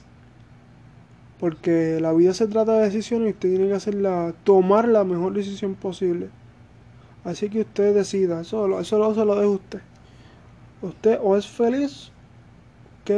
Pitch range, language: 170-210 Hz, English